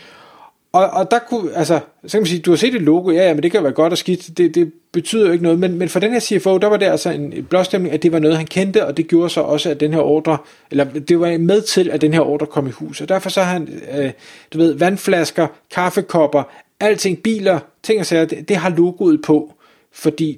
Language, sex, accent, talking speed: Danish, male, native, 265 wpm